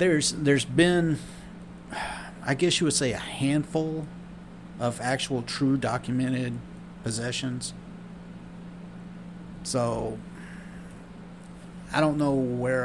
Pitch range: 120-180 Hz